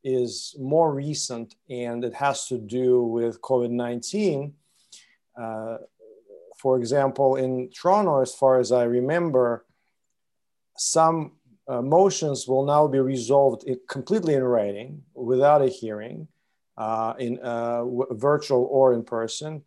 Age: 40-59